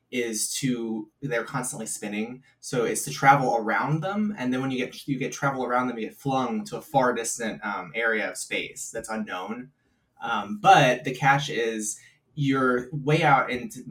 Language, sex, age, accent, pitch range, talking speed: English, male, 20-39, American, 110-140 Hz, 185 wpm